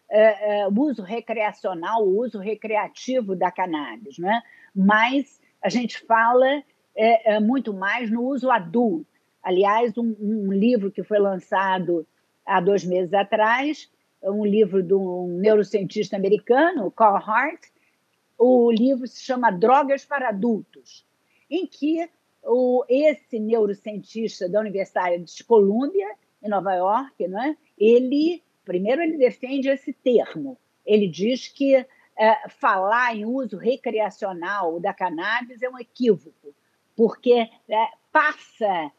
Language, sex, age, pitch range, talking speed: Portuguese, female, 50-69, 210-275 Hz, 125 wpm